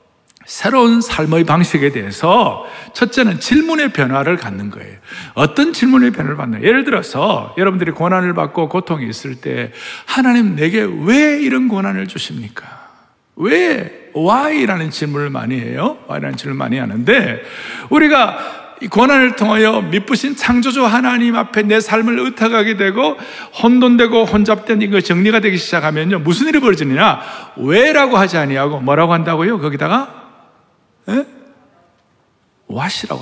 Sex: male